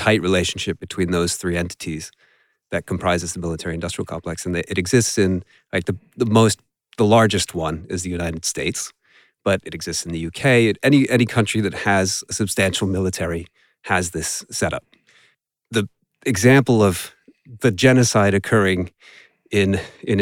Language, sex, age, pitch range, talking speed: English, male, 30-49, 90-115 Hz, 150 wpm